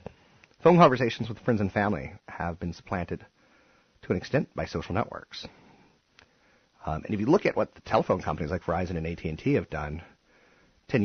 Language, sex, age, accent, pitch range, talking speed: English, male, 30-49, American, 85-105 Hz, 175 wpm